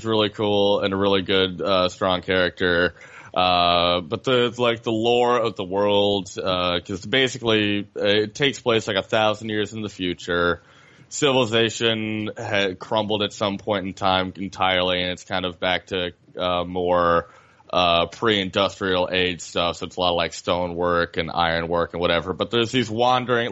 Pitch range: 90-110 Hz